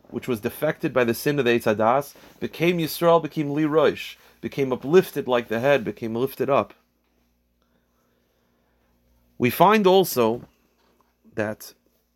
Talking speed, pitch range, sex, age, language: 125 wpm, 115-150 Hz, male, 30-49, English